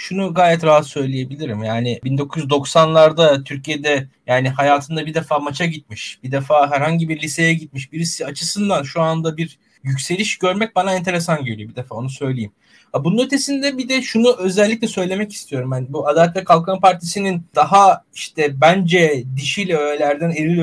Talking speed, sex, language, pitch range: 155 wpm, male, Turkish, 140-185 Hz